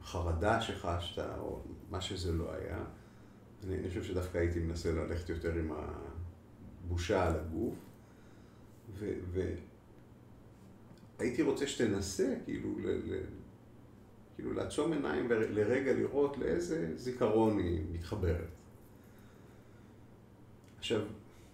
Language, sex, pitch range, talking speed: Hebrew, male, 85-110 Hz, 100 wpm